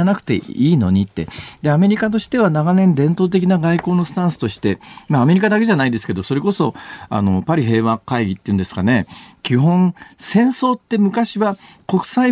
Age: 40-59